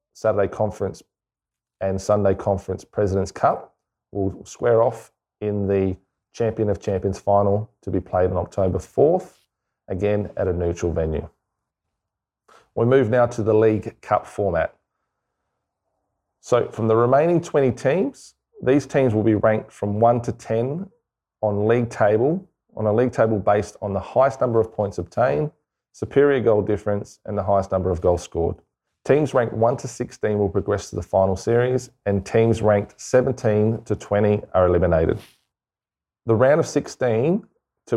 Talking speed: 155 wpm